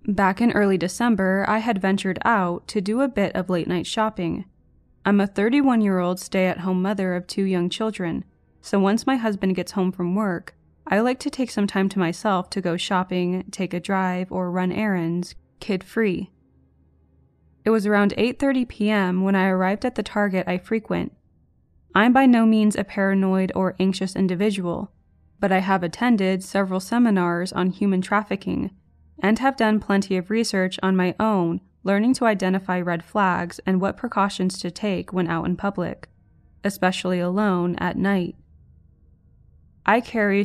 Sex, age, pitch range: female, 20-39, 180-210 Hz